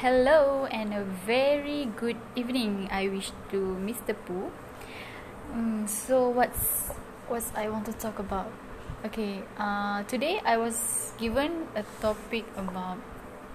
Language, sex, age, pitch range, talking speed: English, female, 10-29, 205-230 Hz, 130 wpm